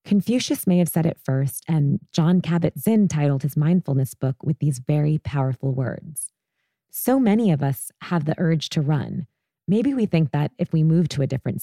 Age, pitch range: 20-39, 145-180 Hz